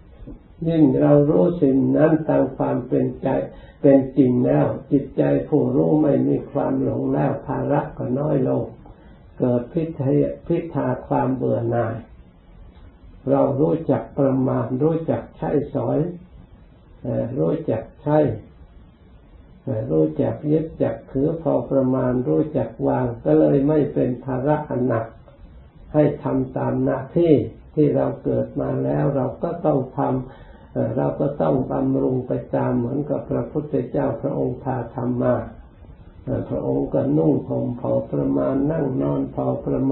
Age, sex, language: 60-79, male, Thai